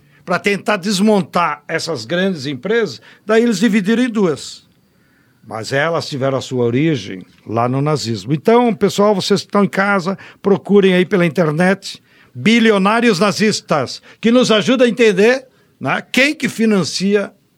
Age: 60-79